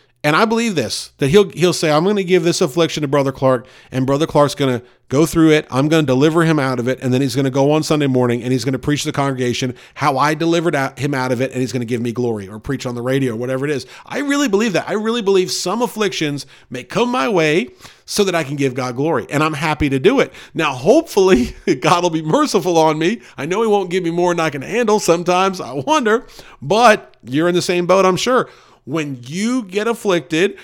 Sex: male